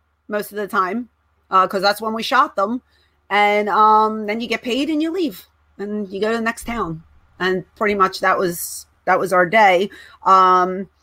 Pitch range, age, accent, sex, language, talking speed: 195-245 Hz, 30-49, American, female, English, 200 wpm